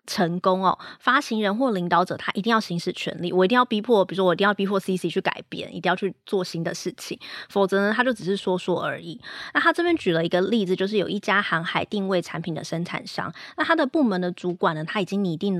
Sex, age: female, 20-39